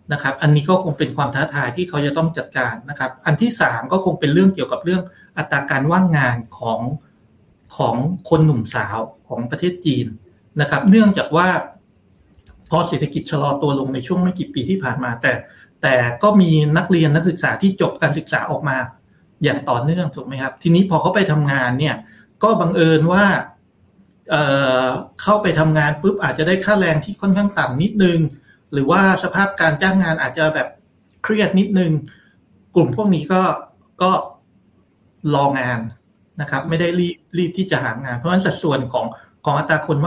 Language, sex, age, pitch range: Thai, male, 60-79, 135-180 Hz